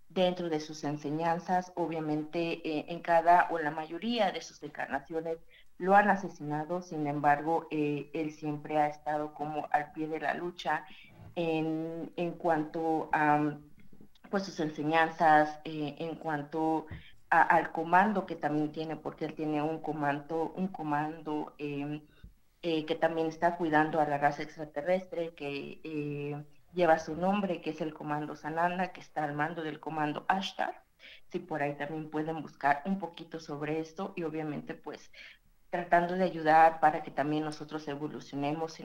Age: 40-59